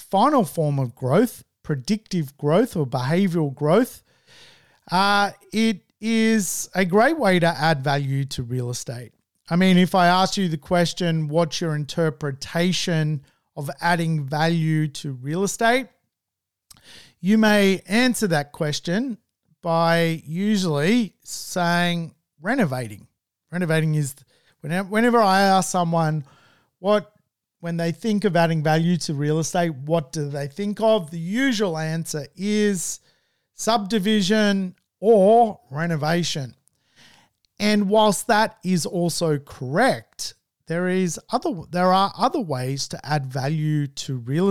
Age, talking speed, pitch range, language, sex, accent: 40-59, 125 wpm, 150-195 Hz, English, male, Australian